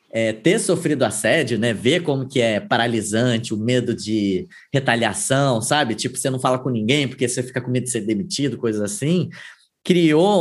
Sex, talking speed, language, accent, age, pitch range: male, 185 wpm, Portuguese, Brazilian, 20-39, 125-180 Hz